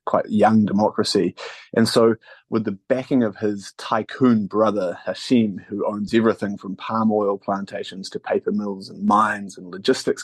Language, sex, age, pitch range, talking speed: English, male, 30-49, 100-115 Hz, 160 wpm